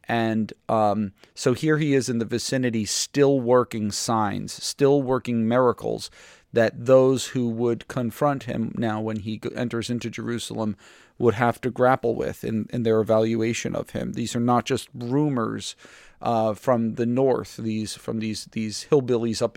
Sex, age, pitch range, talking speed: male, 40-59, 110-125 Hz, 165 wpm